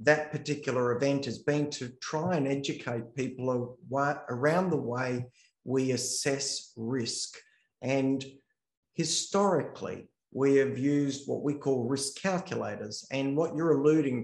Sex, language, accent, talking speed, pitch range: male, English, Australian, 125 wpm, 125-165 Hz